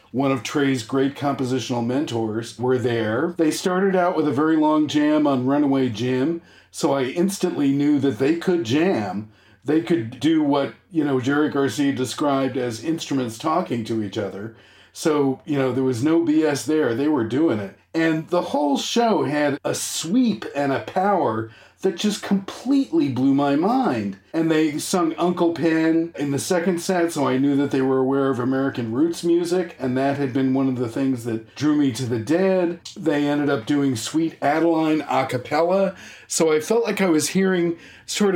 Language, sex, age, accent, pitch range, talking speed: English, male, 40-59, American, 130-170 Hz, 185 wpm